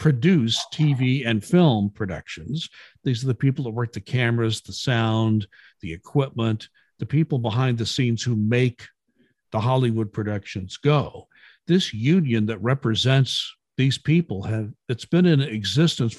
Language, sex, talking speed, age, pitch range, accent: English, male, 140 wpm, 60-79, 110-145 Hz, American